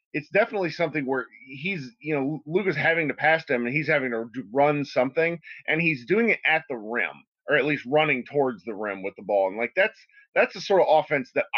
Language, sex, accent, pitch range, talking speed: English, male, American, 125-170 Hz, 230 wpm